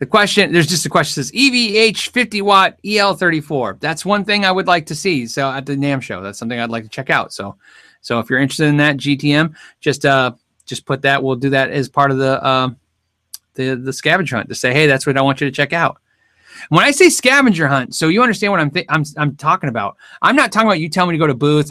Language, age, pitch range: English, 30-49, 125-175 Hz